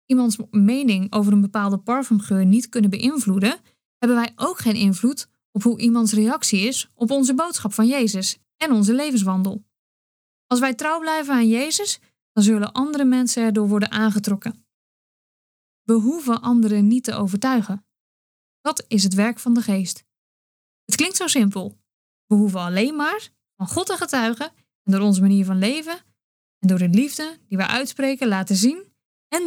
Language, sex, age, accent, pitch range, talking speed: Dutch, female, 20-39, Dutch, 205-260 Hz, 165 wpm